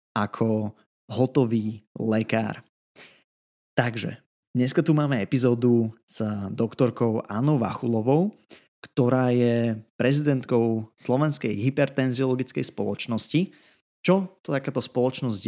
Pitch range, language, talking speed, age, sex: 115-140 Hz, Slovak, 85 wpm, 20-39, male